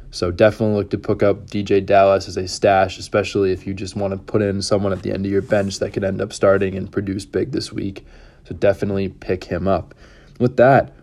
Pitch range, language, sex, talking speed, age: 95-110 Hz, English, male, 235 wpm, 20-39